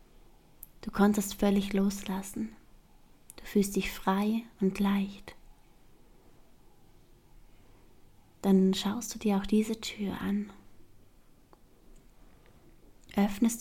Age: 20-39